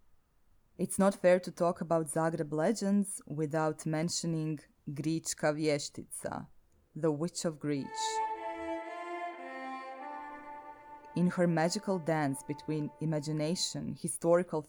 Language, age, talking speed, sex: English, 20-39, 95 wpm, female